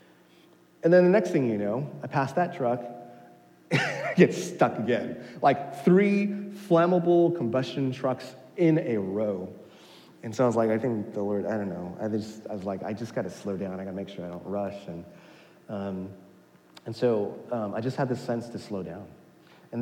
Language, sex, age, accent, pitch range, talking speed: English, male, 30-49, American, 105-150 Hz, 205 wpm